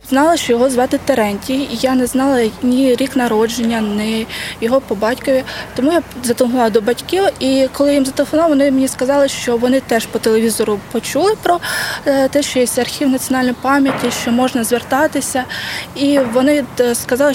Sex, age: female, 20-39